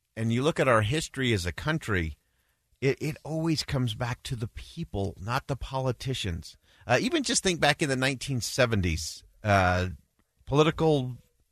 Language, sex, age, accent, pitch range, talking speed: English, male, 40-59, American, 95-135 Hz, 155 wpm